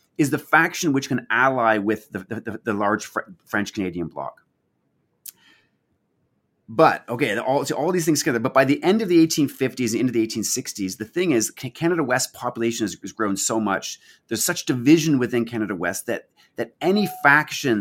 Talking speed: 175 wpm